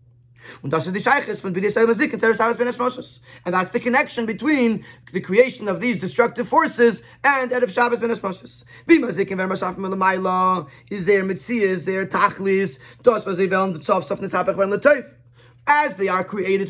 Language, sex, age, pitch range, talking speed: English, male, 30-49, 185-240 Hz, 70 wpm